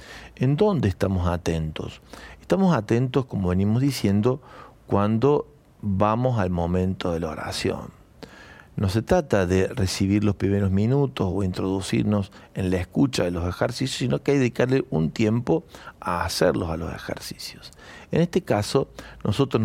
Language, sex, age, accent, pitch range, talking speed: Spanish, male, 50-69, Argentinian, 95-120 Hz, 145 wpm